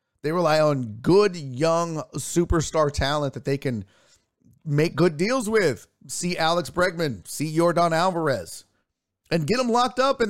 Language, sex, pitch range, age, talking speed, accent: English, male, 130-175 Hz, 40-59, 150 wpm, American